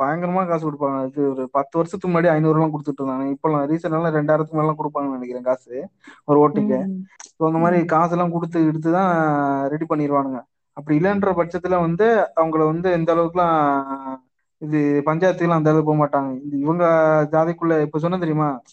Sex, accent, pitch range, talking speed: male, native, 140-165 Hz, 160 wpm